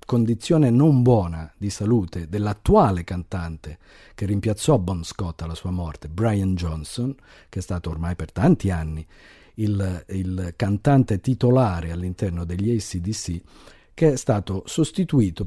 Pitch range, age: 90-120 Hz, 50-69